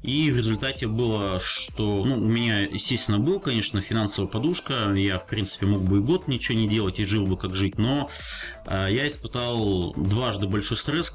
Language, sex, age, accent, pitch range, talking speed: Russian, male, 30-49, native, 100-120 Hz, 190 wpm